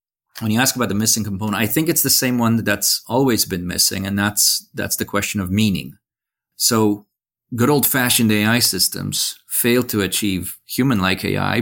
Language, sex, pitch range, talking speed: English, male, 100-120 Hz, 180 wpm